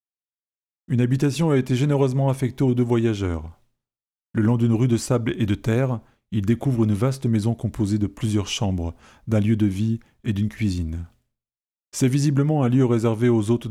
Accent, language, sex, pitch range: French, French, male, 105-125 Hz